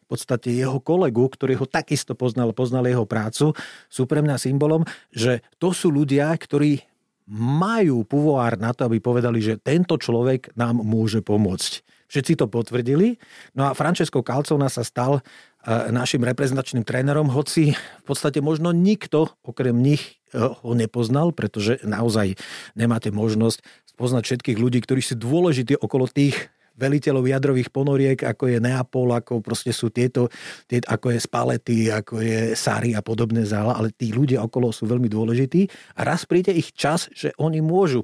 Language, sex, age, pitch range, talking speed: Slovak, male, 40-59, 115-145 Hz, 160 wpm